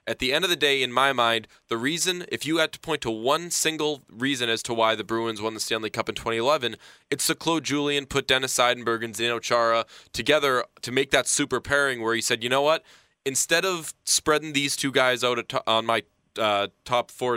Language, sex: English, male